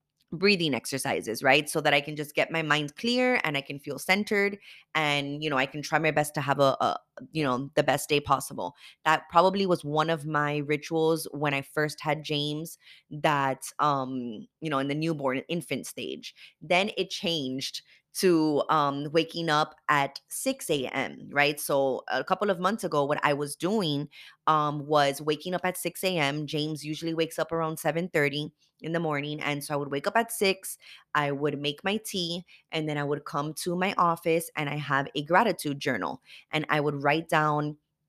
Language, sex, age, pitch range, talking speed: English, female, 20-39, 145-165 Hz, 195 wpm